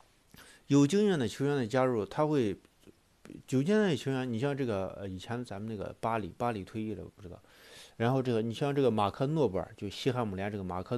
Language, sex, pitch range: Chinese, male, 100-135 Hz